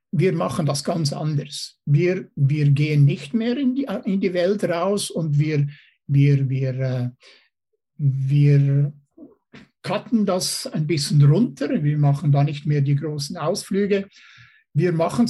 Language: German